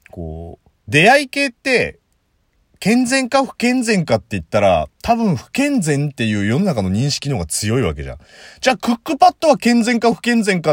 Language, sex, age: Japanese, male, 30-49